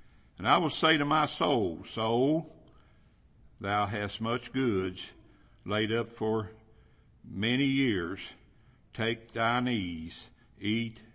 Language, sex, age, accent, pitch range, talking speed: English, male, 60-79, American, 100-120 Hz, 115 wpm